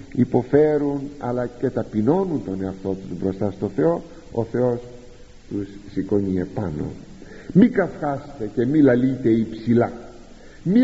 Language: Greek